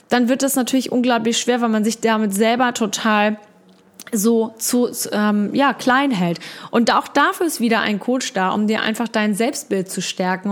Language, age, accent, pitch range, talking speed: German, 20-39, German, 210-245 Hz, 195 wpm